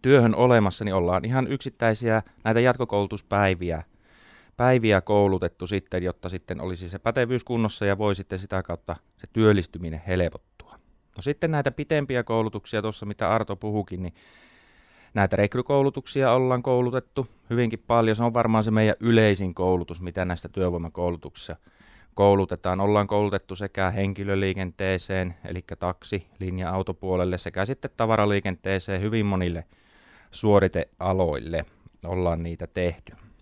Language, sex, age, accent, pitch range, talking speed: Finnish, male, 30-49, native, 90-110 Hz, 120 wpm